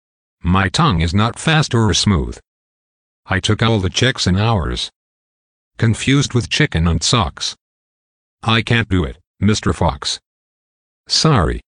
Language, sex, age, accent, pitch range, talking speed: English, male, 50-69, American, 90-120 Hz, 135 wpm